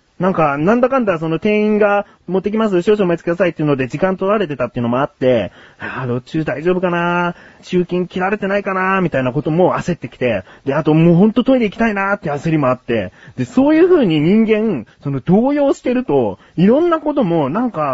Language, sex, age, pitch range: Japanese, male, 30-49, 140-215 Hz